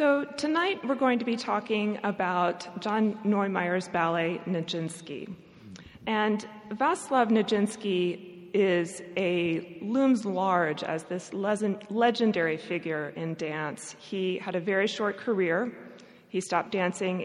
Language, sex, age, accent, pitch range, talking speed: English, female, 30-49, American, 175-220 Hz, 120 wpm